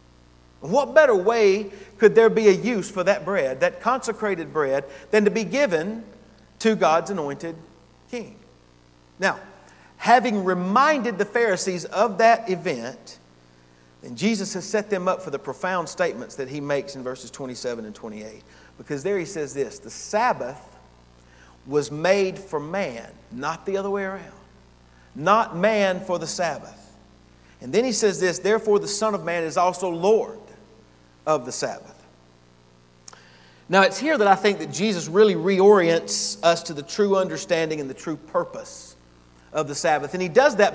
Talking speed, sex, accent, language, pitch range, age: 165 wpm, male, American, English, 140-210 Hz, 40-59